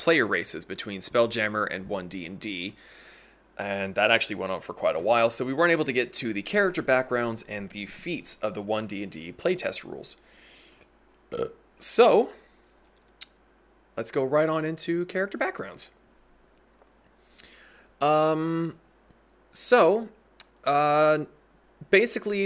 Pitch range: 110-165 Hz